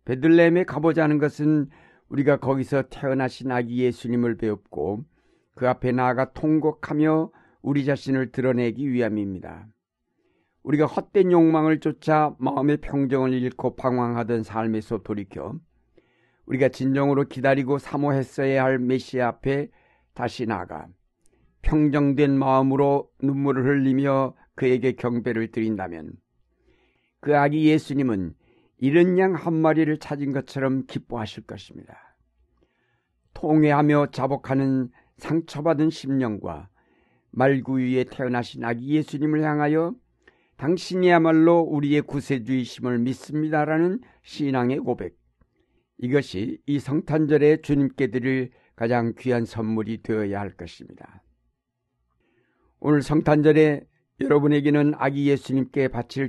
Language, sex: Korean, male